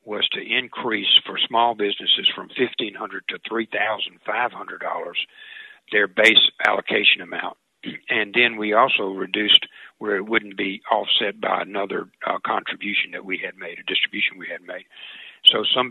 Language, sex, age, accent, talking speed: English, male, 50-69, American, 145 wpm